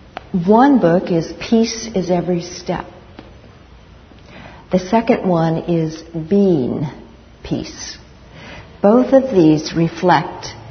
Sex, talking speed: female, 95 wpm